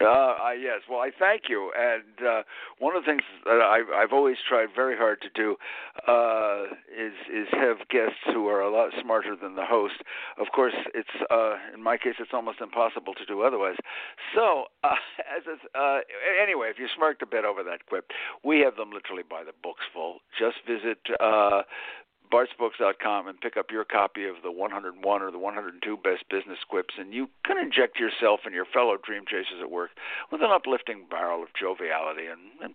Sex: male